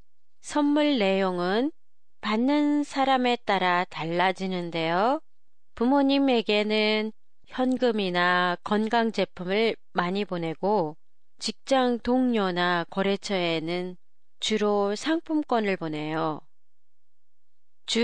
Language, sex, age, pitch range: Japanese, female, 30-49, 190-255 Hz